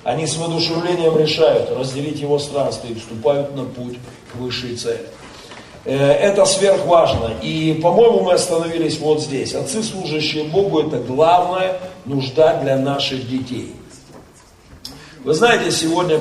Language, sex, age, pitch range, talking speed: Russian, male, 40-59, 150-235 Hz, 125 wpm